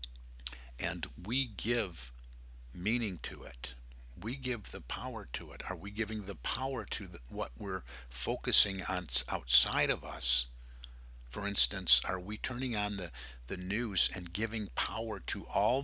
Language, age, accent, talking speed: English, 50-69, American, 150 wpm